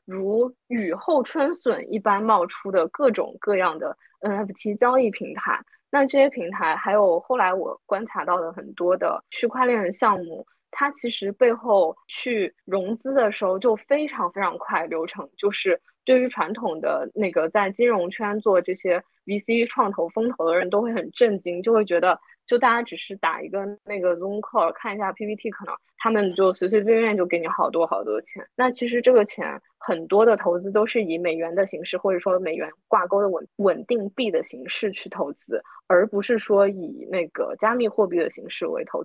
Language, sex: Chinese, female